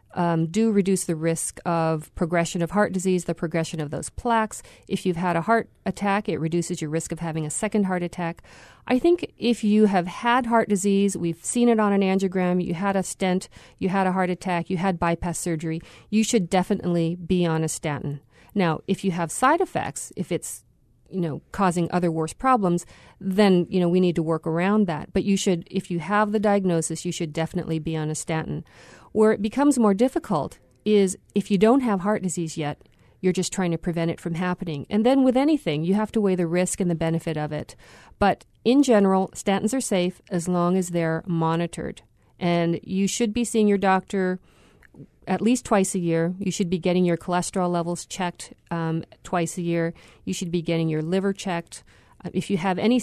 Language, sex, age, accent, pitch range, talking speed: English, female, 40-59, American, 170-200 Hz, 210 wpm